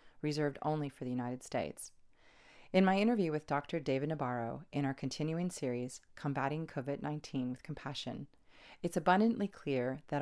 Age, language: 30-49, English